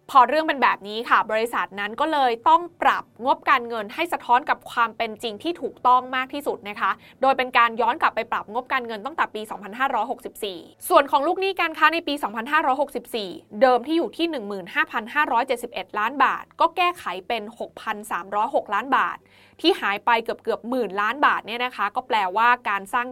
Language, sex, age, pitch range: Thai, female, 20-39, 215-285 Hz